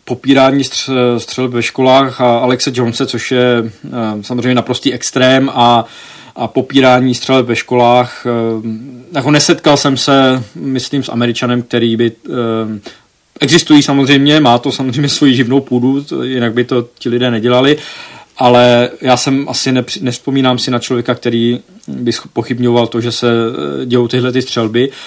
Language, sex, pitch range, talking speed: Czech, male, 120-130 Hz, 160 wpm